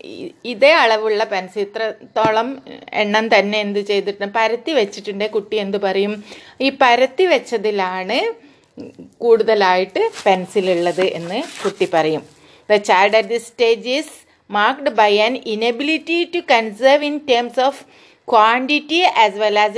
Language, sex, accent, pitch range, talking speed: Malayalam, female, native, 205-270 Hz, 115 wpm